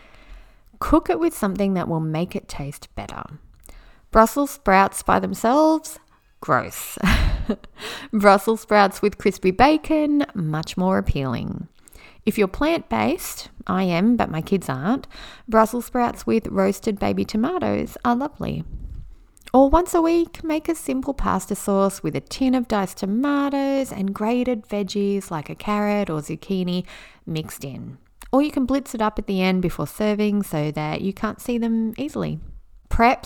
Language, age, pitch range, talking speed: English, 30-49, 175-250 Hz, 150 wpm